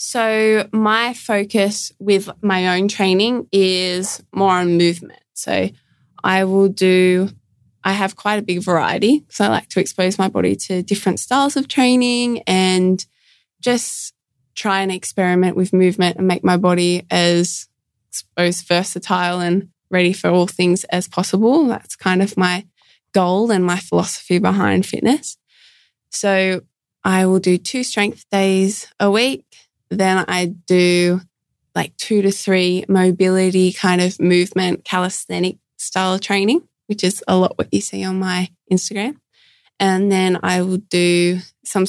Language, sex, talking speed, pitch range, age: English, female, 150 wpm, 180-205 Hz, 20-39